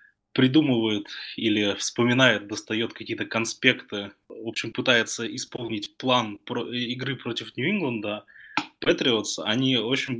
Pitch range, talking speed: 110-130 Hz, 110 wpm